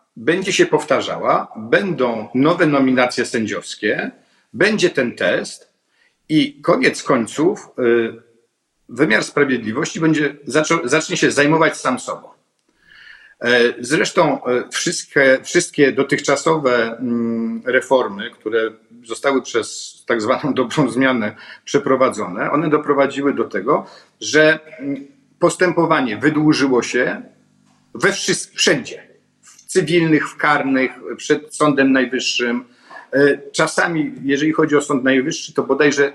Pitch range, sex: 125-155 Hz, male